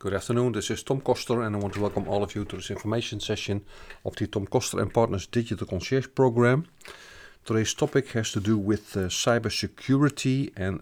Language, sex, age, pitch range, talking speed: English, male, 40-59, 95-115 Hz, 200 wpm